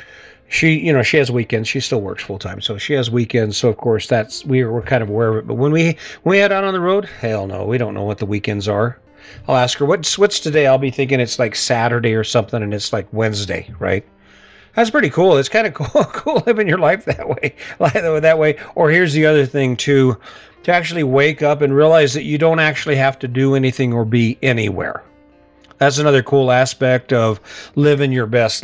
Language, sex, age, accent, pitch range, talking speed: English, male, 40-59, American, 115-150 Hz, 230 wpm